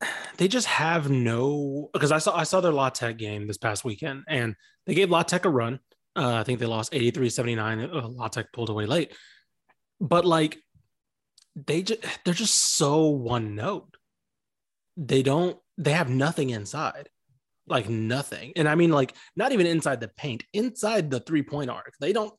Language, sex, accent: English, male, American